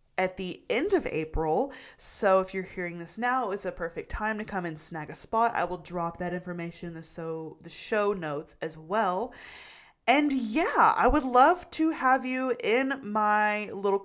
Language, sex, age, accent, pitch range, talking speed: English, female, 20-39, American, 175-255 Hz, 190 wpm